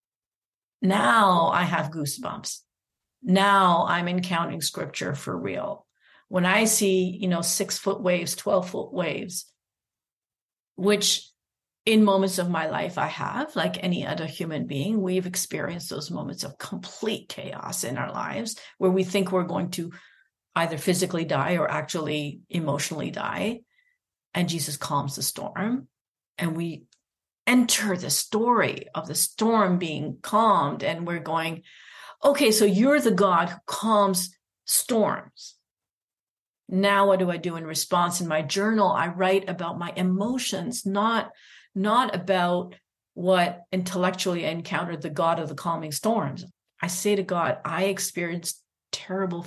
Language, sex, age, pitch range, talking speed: English, female, 50-69, 165-200 Hz, 145 wpm